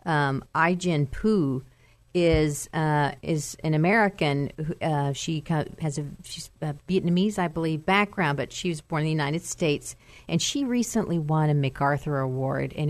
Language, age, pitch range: English, 40-59, 145-170 Hz